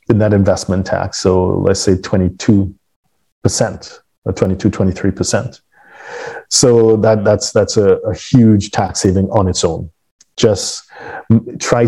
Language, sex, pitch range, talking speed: English, male, 95-115 Hz, 125 wpm